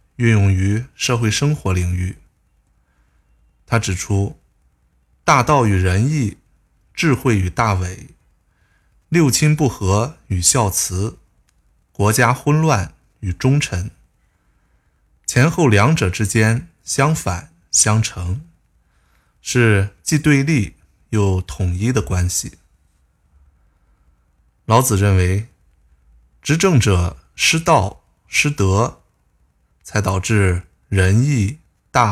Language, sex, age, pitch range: Chinese, male, 20-39, 85-120 Hz